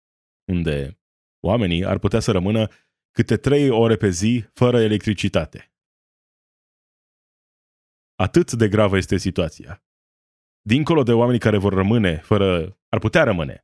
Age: 20-39